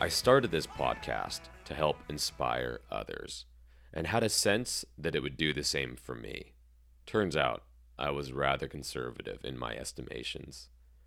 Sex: male